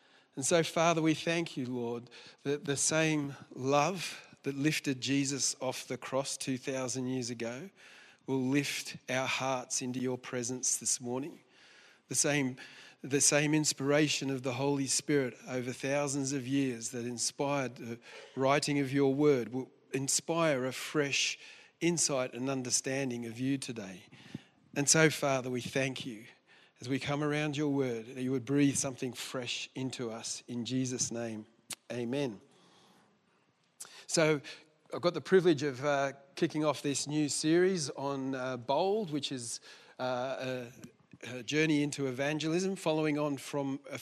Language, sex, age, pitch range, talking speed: English, male, 40-59, 130-150 Hz, 150 wpm